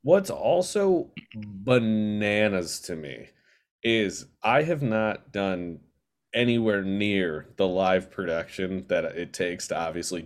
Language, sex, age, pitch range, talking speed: English, male, 30-49, 105-160 Hz, 115 wpm